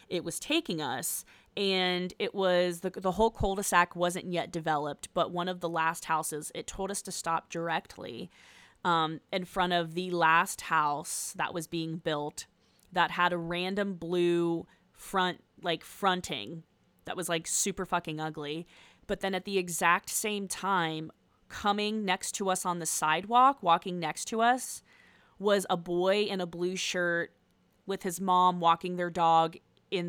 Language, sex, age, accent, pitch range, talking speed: English, female, 20-39, American, 170-195 Hz, 165 wpm